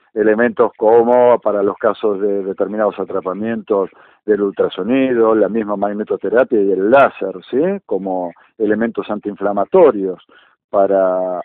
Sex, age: male, 50-69